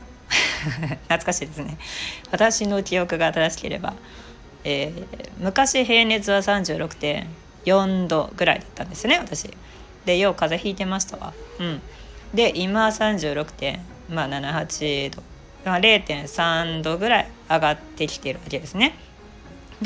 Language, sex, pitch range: Japanese, female, 155-220 Hz